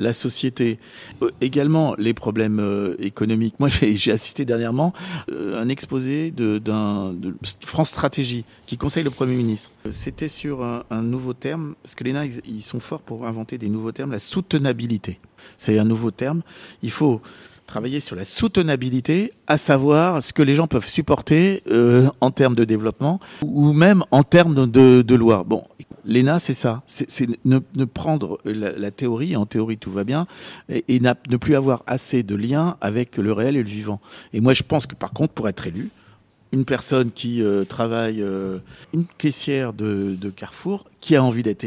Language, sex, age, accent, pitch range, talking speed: French, male, 50-69, French, 110-145 Hz, 195 wpm